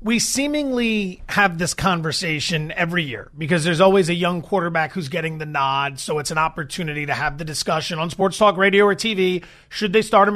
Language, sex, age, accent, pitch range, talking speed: English, male, 30-49, American, 165-205 Hz, 205 wpm